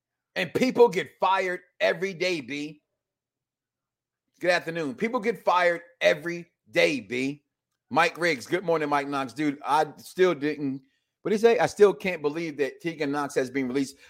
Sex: male